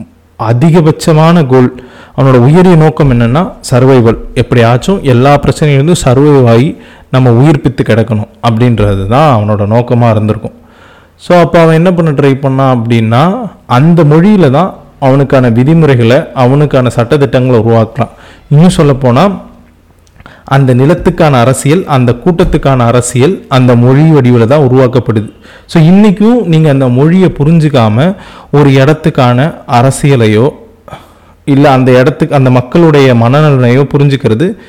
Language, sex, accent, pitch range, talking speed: Tamil, male, native, 120-155 Hz, 110 wpm